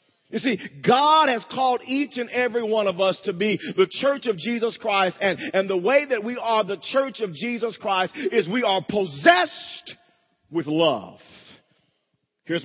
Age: 40-59